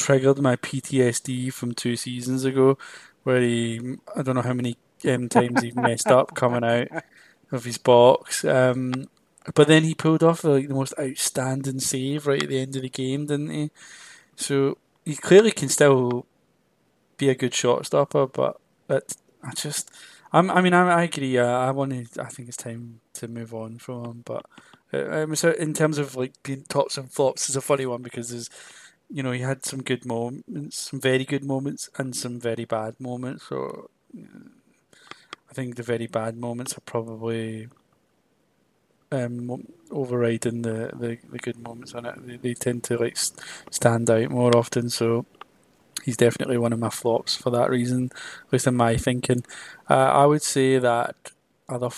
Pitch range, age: 120-140 Hz, 20-39